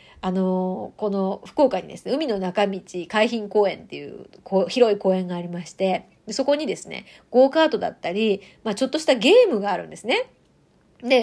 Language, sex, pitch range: Japanese, female, 205-330 Hz